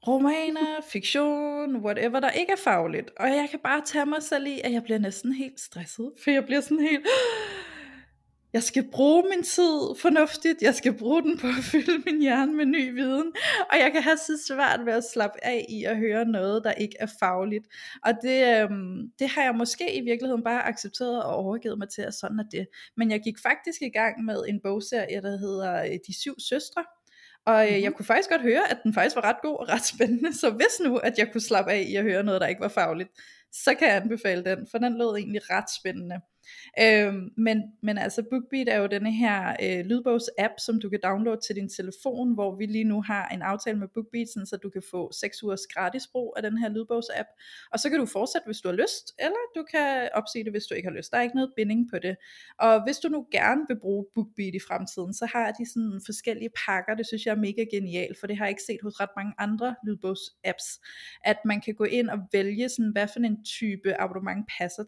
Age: 20-39